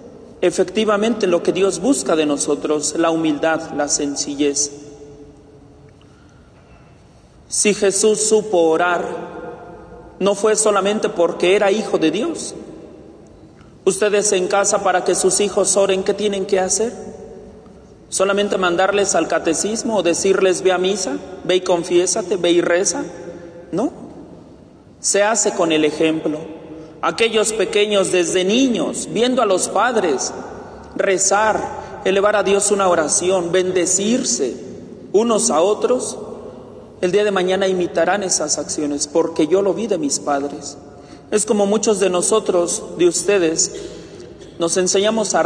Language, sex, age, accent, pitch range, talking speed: Spanish, male, 40-59, Mexican, 165-205 Hz, 130 wpm